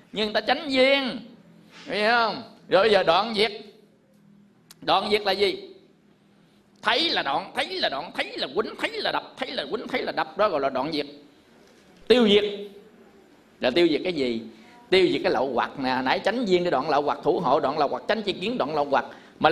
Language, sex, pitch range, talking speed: Vietnamese, male, 180-235 Hz, 205 wpm